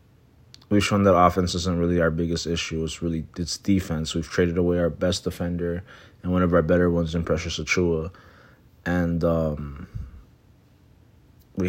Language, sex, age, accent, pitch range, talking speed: English, male, 20-39, American, 85-100 Hz, 160 wpm